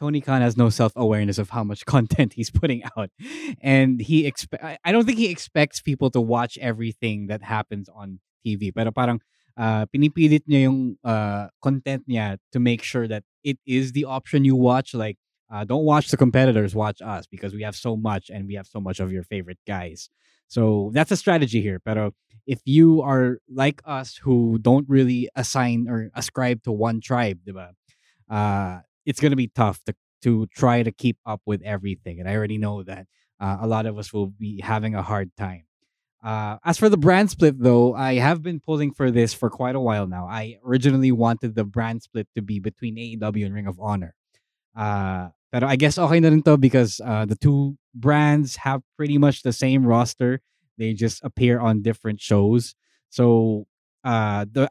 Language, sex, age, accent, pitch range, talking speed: English, male, 20-39, Filipino, 105-135 Hz, 200 wpm